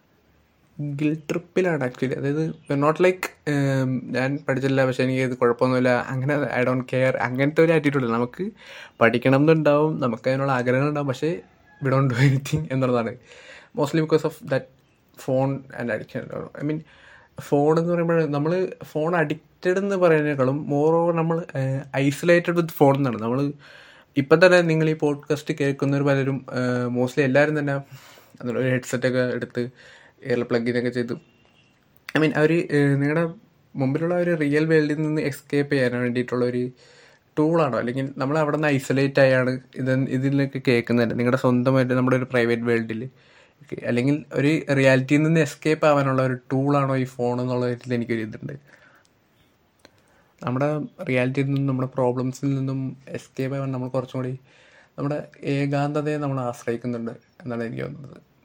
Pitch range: 125-150 Hz